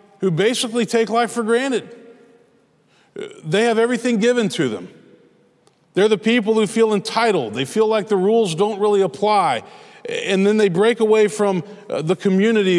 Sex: male